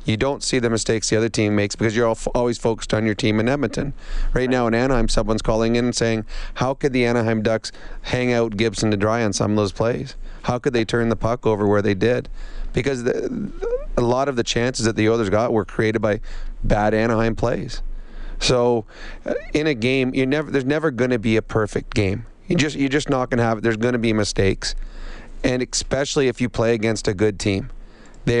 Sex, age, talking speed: male, 30-49, 215 wpm